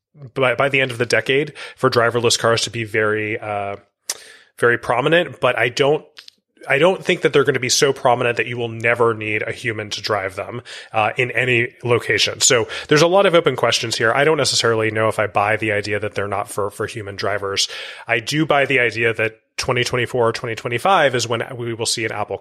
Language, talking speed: English, 220 wpm